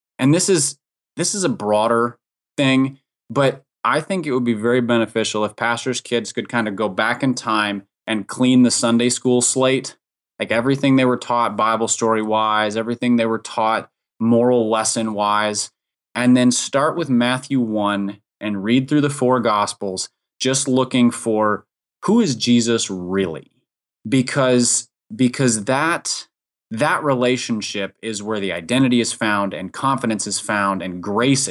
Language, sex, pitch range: English, male, 110-130 Hz